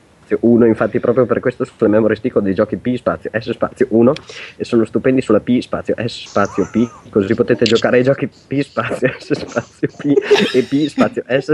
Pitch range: 105-130 Hz